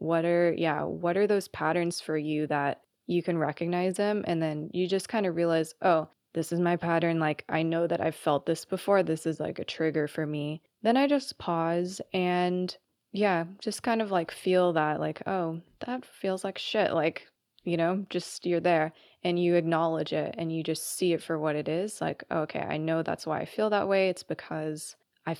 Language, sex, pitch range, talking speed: English, female, 155-185 Hz, 215 wpm